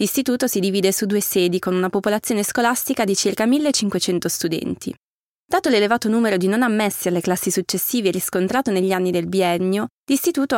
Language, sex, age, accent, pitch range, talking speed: Italian, female, 20-39, native, 190-245 Hz, 165 wpm